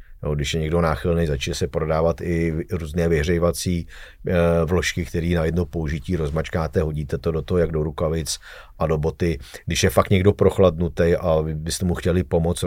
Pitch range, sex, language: 80-90 Hz, male, Czech